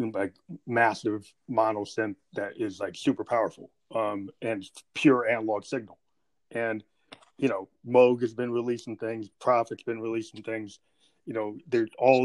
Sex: male